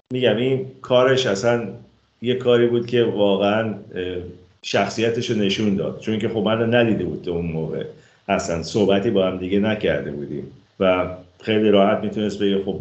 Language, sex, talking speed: Persian, male, 160 wpm